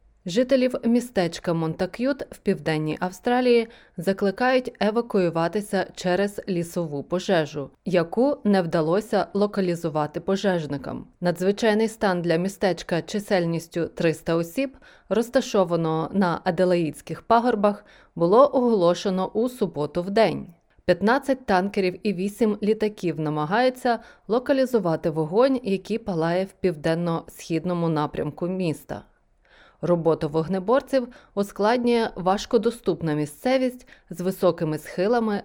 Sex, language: female, Ukrainian